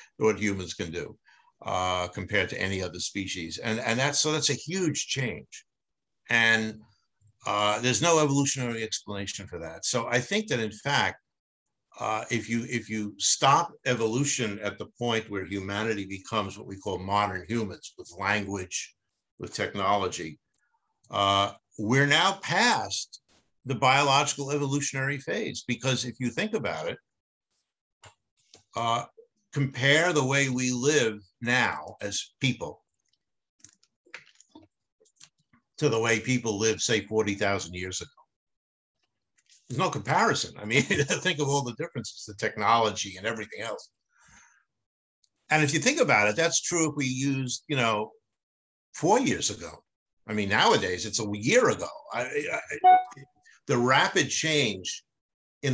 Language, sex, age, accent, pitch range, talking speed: Italian, male, 60-79, American, 105-140 Hz, 140 wpm